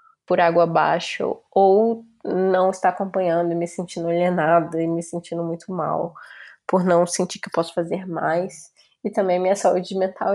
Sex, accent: female, Brazilian